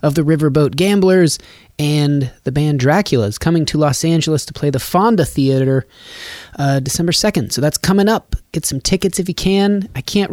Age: 30-49